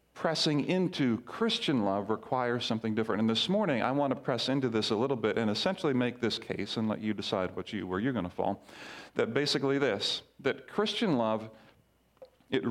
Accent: American